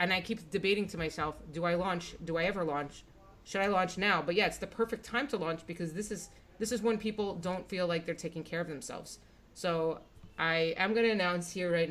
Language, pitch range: English, 150-185 Hz